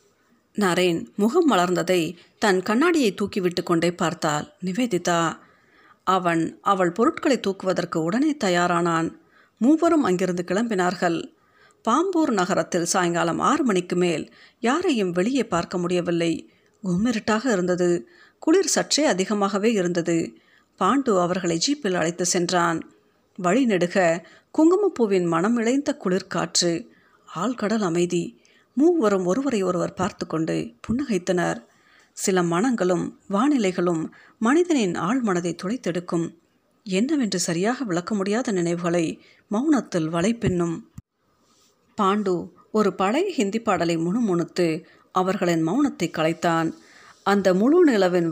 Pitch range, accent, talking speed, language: 175-230 Hz, native, 100 wpm, Tamil